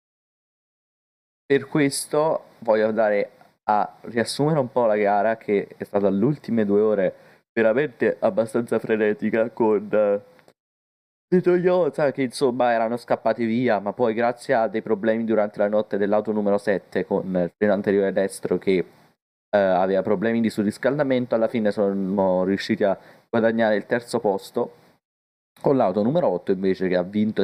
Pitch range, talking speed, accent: 100-120 Hz, 145 wpm, native